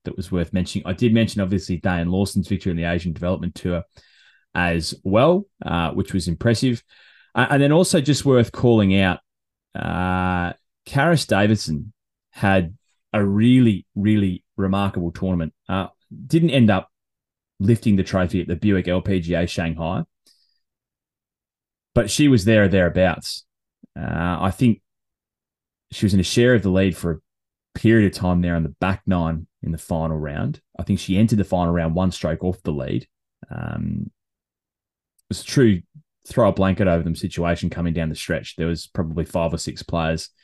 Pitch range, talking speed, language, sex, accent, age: 85-105 Hz, 175 wpm, English, male, Australian, 20-39